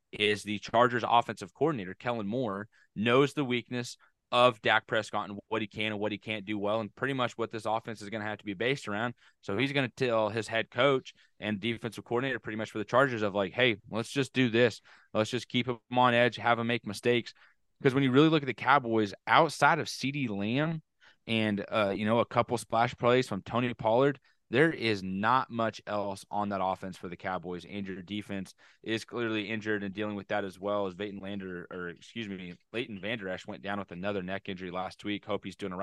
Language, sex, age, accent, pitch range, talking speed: English, male, 20-39, American, 100-115 Hz, 225 wpm